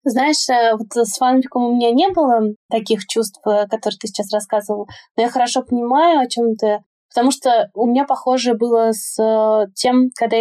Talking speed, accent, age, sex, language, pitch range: 180 wpm, native, 20-39, female, Russian, 210-245 Hz